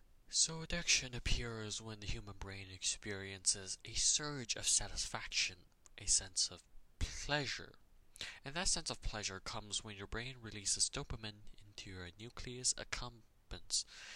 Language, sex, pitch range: English, male, 95-120 Hz